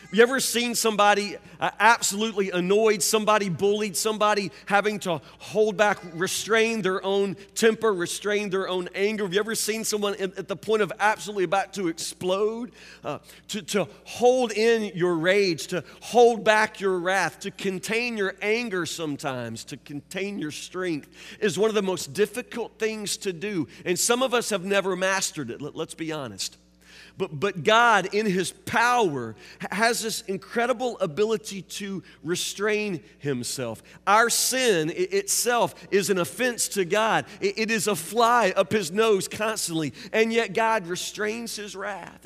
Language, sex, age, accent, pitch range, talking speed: English, male, 40-59, American, 170-215 Hz, 160 wpm